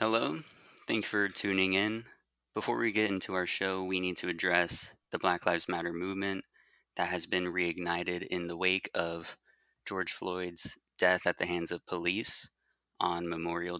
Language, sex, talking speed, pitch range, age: English, male, 170 wpm, 85-95 Hz, 20-39